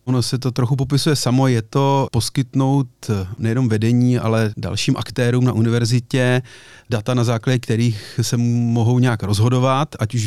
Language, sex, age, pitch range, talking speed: Czech, male, 30-49, 110-125 Hz, 150 wpm